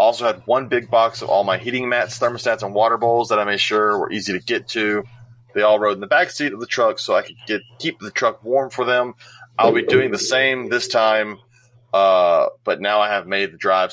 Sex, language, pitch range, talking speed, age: male, English, 100-125 Hz, 255 wpm, 30-49